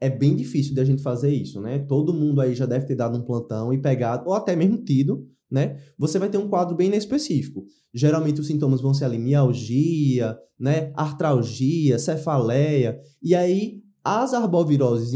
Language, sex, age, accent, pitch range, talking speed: Portuguese, male, 20-39, Brazilian, 135-175 Hz, 180 wpm